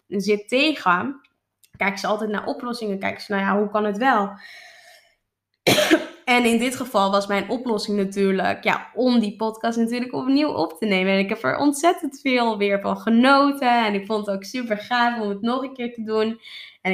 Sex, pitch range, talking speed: female, 210-255 Hz, 200 wpm